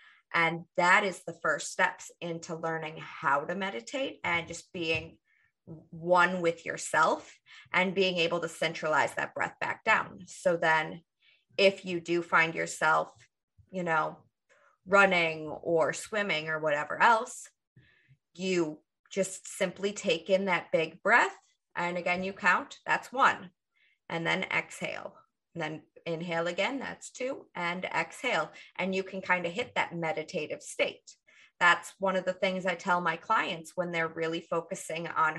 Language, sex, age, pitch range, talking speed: English, female, 20-39, 165-200 Hz, 150 wpm